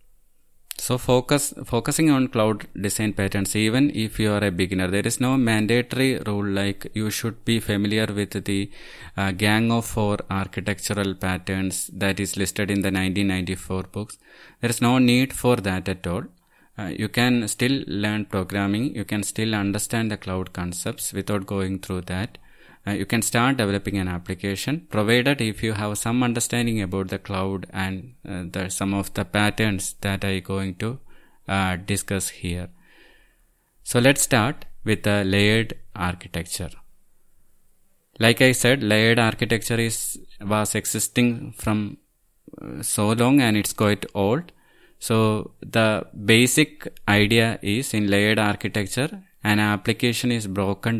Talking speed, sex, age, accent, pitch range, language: 150 wpm, male, 20-39, Indian, 95-115 Hz, English